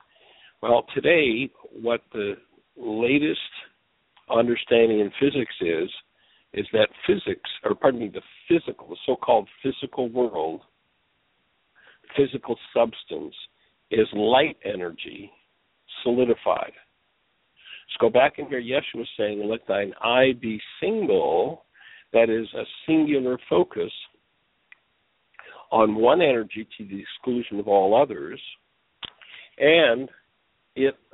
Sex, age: male, 60-79